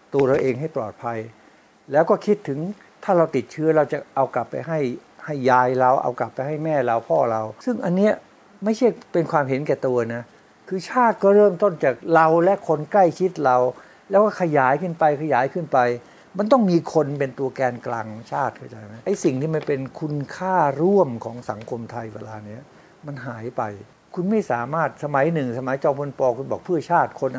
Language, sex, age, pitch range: English, male, 60-79, 120-170 Hz